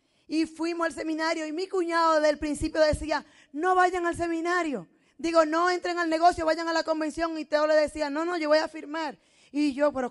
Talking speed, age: 220 wpm, 10-29